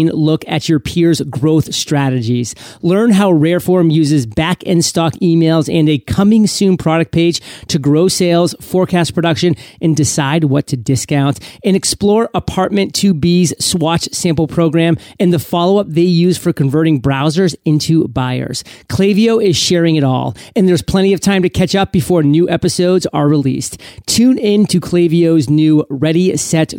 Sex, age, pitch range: male, 30-49, 145-180 Hz